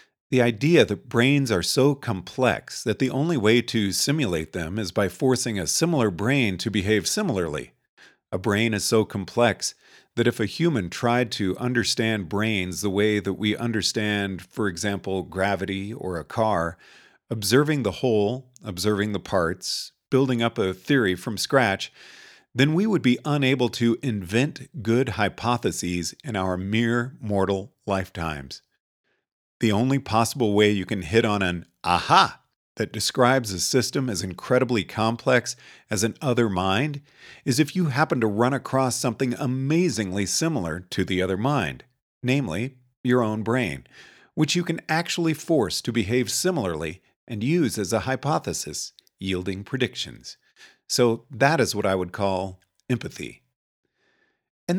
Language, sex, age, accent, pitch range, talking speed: English, male, 40-59, American, 100-130 Hz, 150 wpm